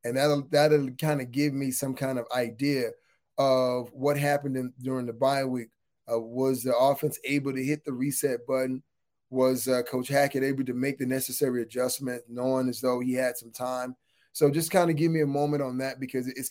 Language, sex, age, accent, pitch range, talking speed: English, male, 20-39, American, 130-145 Hz, 205 wpm